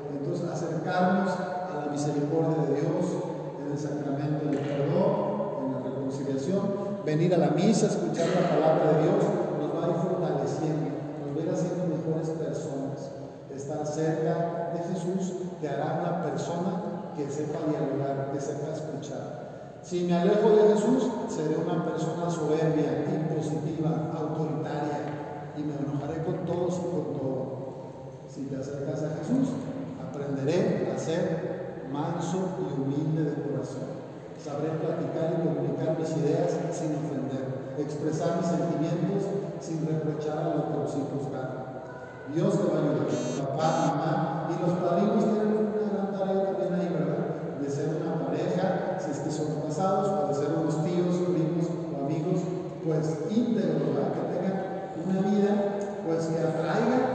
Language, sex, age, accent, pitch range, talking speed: Spanish, male, 50-69, Mexican, 150-180 Hz, 155 wpm